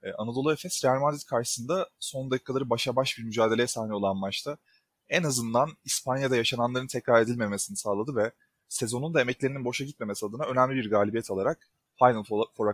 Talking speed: 160 wpm